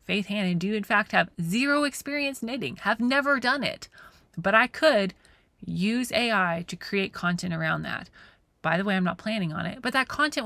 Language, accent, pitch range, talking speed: English, American, 170-220 Hz, 195 wpm